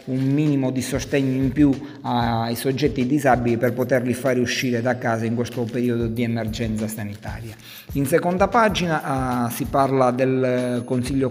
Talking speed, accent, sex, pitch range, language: 155 wpm, native, male, 120-140 Hz, Italian